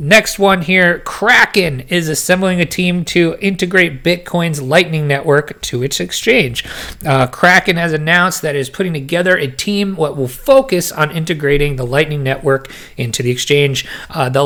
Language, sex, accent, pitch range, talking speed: English, male, American, 130-170 Hz, 165 wpm